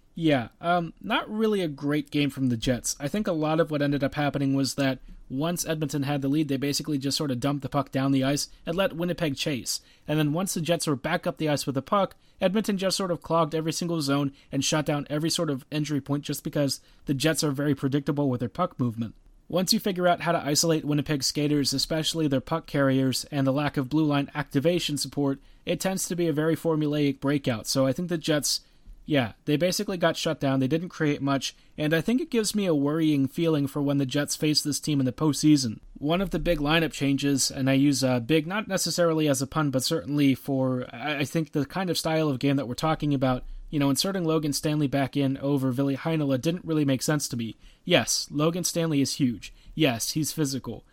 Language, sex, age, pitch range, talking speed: English, male, 30-49, 140-165 Hz, 235 wpm